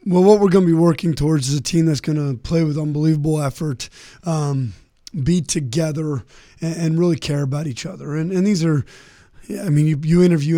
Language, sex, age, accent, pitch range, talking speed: English, male, 20-39, American, 140-165 Hz, 215 wpm